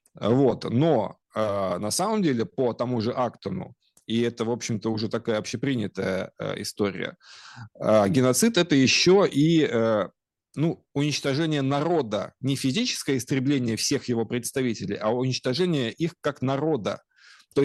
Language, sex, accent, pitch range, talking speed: Russian, male, native, 115-150 Hz, 140 wpm